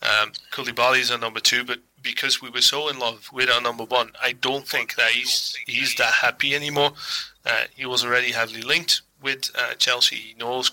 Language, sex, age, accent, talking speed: English, male, 30-49, British, 205 wpm